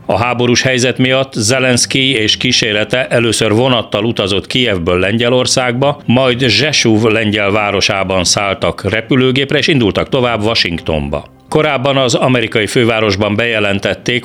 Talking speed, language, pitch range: 115 wpm, Hungarian, 100-130 Hz